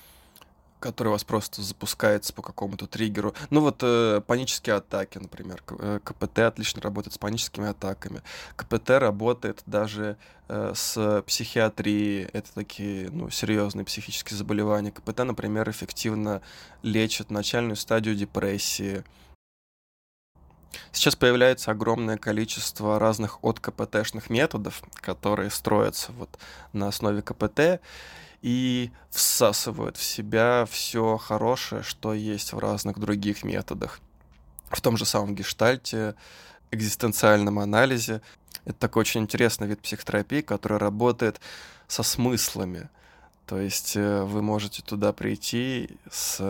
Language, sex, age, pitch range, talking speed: Russian, male, 20-39, 100-110 Hz, 115 wpm